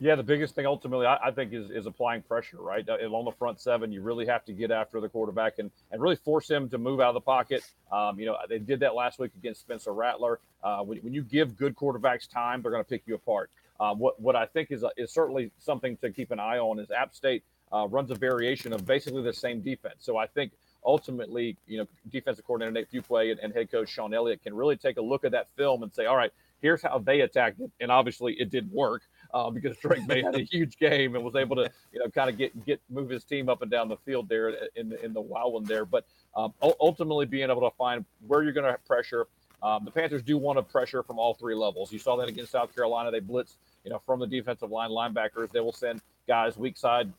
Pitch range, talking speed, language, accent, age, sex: 115-145 Hz, 265 wpm, English, American, 40-59, male